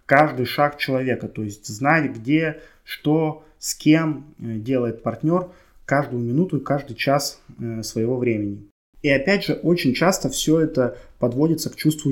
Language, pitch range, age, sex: Russian, 120-155 Hz, 20-39, male